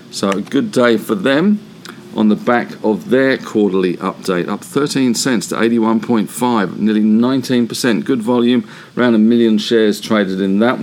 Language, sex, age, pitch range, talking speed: English, male, 50-69, 105-135 Hz, 160 wpm